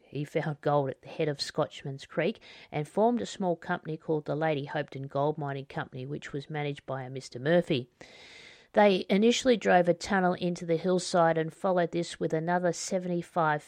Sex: female